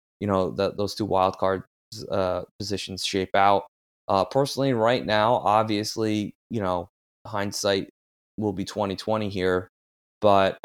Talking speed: 135 wpm